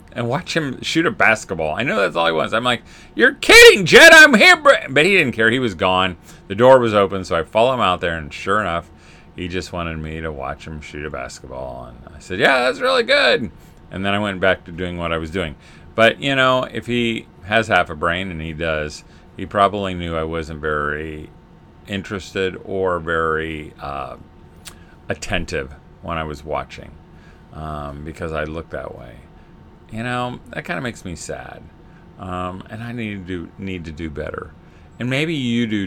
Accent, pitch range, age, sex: American, 80-110 Hz, 40-59, male